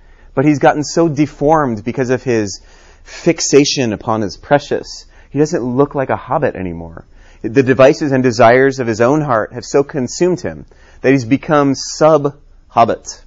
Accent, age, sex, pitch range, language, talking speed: American, 30-49, male, 100-135 Hz, English, 165 wpm